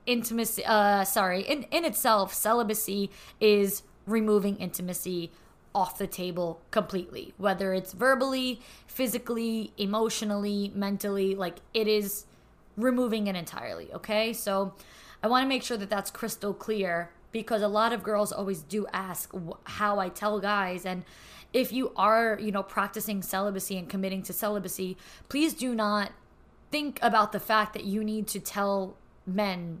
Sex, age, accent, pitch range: female, 20-39, American, 190-225 Hz